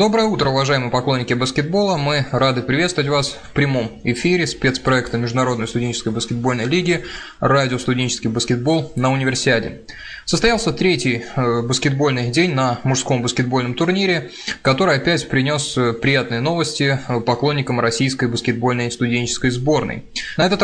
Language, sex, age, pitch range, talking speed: Russian, male, 20-39, 120-150 Hz, 120 wpm